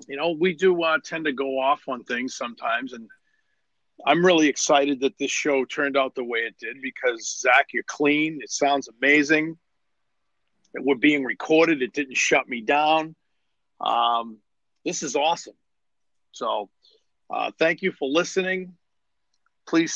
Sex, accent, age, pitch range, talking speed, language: male, American, 50-69, 135-165 Hz, 155 wpm, English